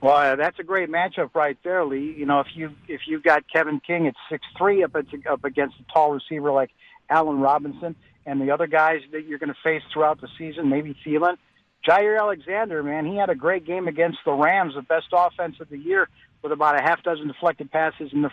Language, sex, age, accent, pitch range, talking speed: English, male, 50-69, American, 145-175 Hz, 220 wpm